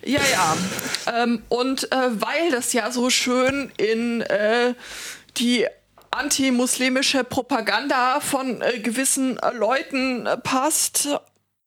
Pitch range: 230-260 Hz